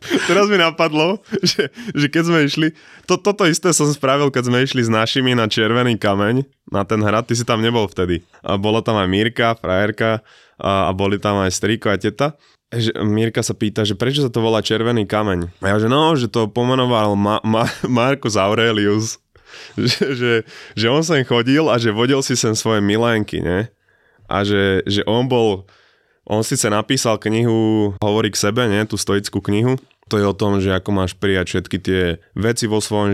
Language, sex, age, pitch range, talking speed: Slovak, male, 20-39, 100-125 Hz, 185 wpm